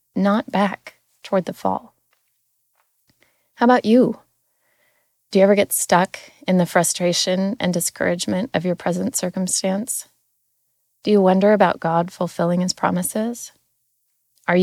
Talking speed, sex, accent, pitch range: 125 wpm, female, American, 170-200 Hz